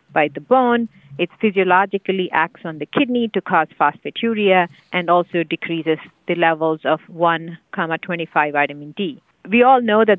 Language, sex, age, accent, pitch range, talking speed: English, female, 50-69, Indian, 170-215 Hz, 145 wpm